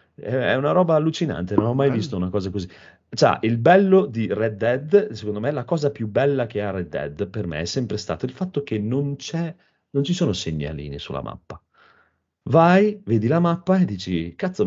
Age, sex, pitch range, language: 30-49, male, 110-185 Hz, Italian